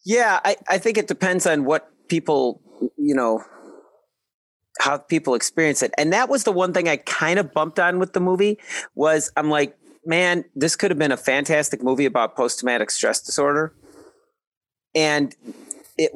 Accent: American